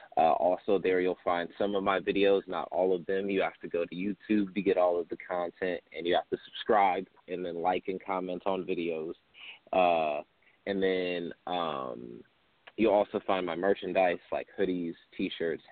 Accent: American